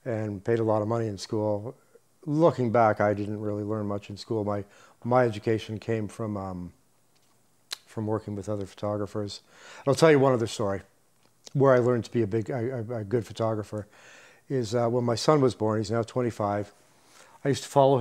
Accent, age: American, 40-59